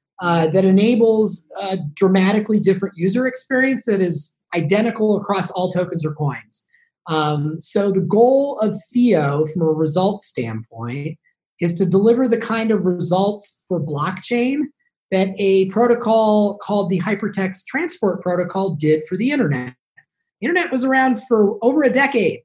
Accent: American